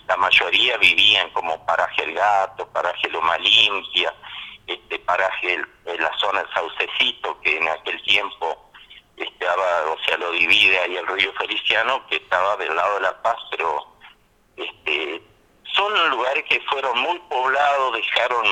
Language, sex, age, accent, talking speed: Spanish, male, 50-69, Argentinian, 150 wpm